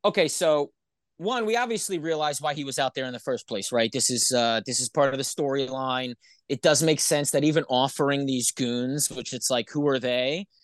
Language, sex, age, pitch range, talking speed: English, male, 30-49, 140-210 Hz, 225 wpm